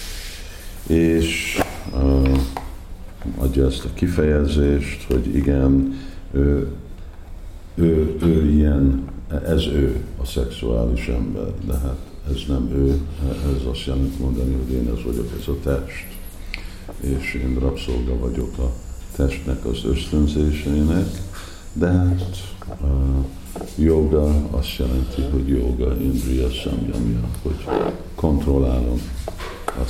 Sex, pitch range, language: male, 65-80 Hz, Hungarian